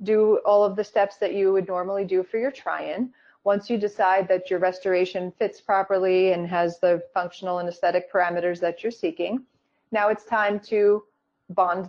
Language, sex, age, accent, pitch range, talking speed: English, female, 30-49, American, 185-225 Hz, 180 wpm